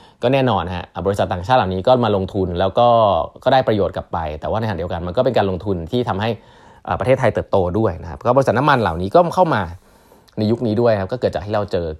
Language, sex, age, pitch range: Thai, male, 20-39, 95-120 Hz